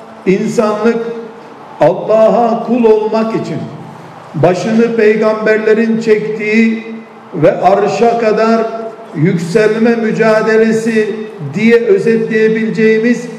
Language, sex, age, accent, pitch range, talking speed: Turkish, male, 50-69, native, 215-230 Hz, 65 wpm